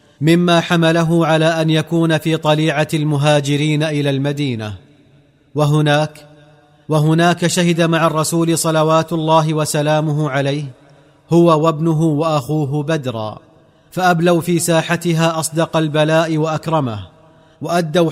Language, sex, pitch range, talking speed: Arabic, male, 145-165 Hz, 100 wpm